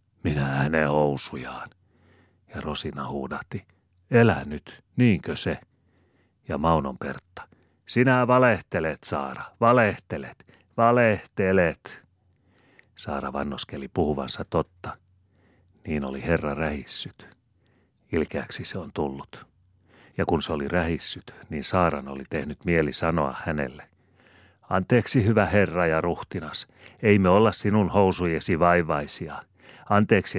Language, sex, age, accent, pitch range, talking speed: Finnish, male, 40-59, native, 80-105 Hz, 105 wpm